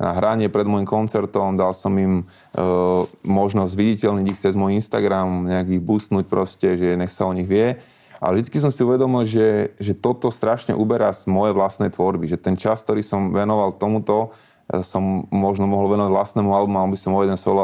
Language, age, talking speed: Slovak, 20-39, 195 wpm